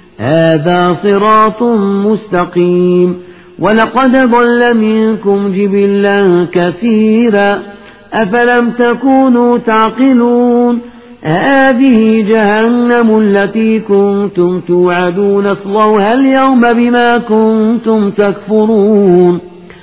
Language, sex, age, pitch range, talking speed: Arabic, male, 50-69, 180-220 Hz, 65 wpm